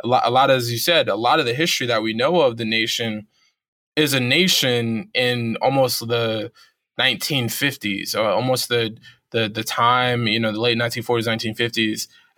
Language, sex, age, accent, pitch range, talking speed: English, male, 20-39, American, 115-130 Hz, 165 wpm